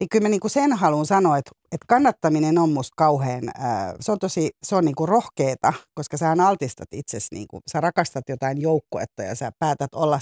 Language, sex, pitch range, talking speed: Finnish, female, 140-180 Hz, 200 wpm